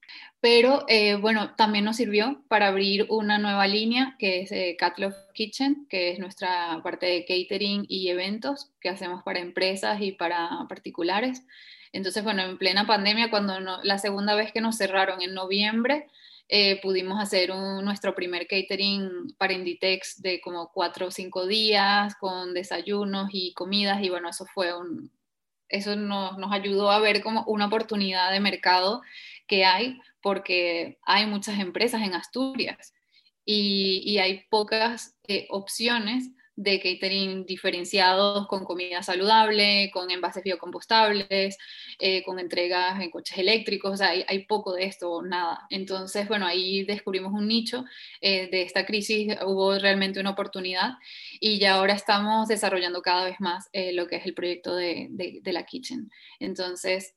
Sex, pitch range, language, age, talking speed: female, 185-215 Hz, Spanish, 20-39, 160 wpm